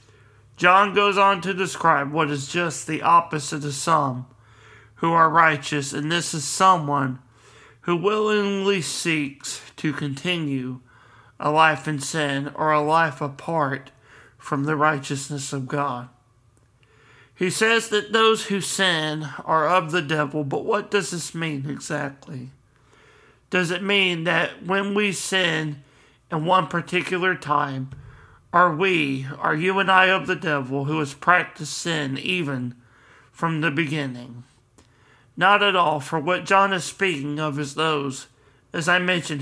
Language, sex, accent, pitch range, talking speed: English, male, American, 140-180 Hz, 145 wpm